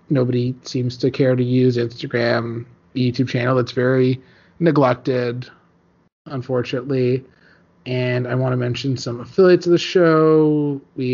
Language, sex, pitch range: English, male, 120-150 Hz